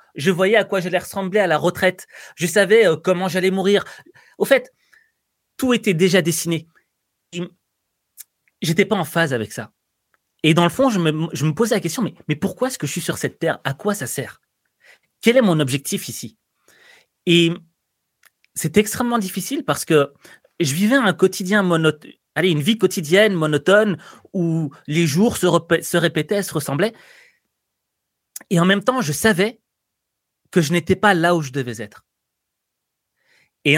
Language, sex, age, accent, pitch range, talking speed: French, male, 30-49, French, 165-215 Hz, 175 wpm